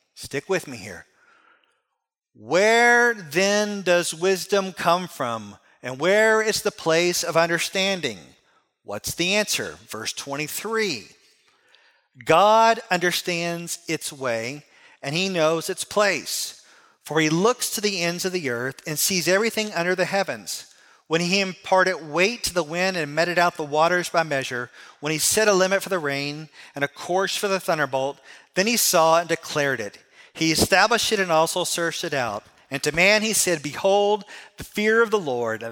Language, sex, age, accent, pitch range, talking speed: English, male, 40-59, American, 150-195 Hz, 165 wpm